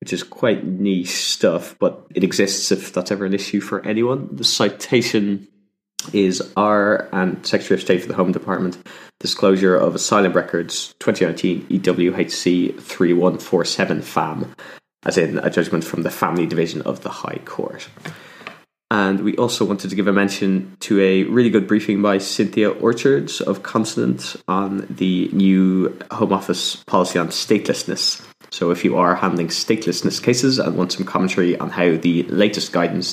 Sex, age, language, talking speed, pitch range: male, 20-39, English, 160 wpm, 90-105 Hz